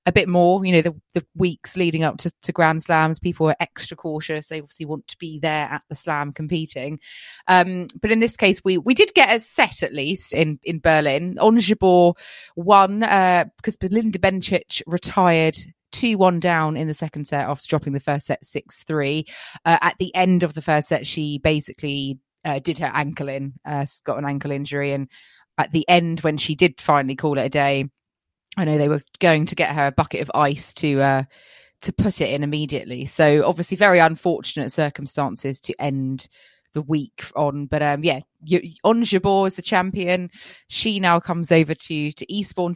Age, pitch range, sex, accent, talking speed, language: 20-39, 150-180 Hz, female, British, 200 wpm, English